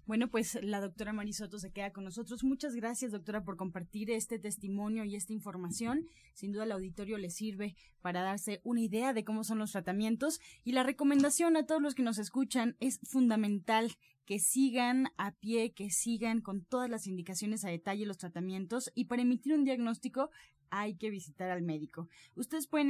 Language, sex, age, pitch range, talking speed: Spanish, female, 20-39, 190-245 Hz, 185 wpm